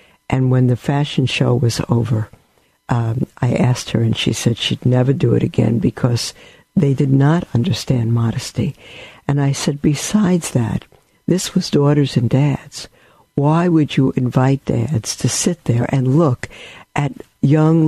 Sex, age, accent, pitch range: female, 60-79, American, 135-175 Hz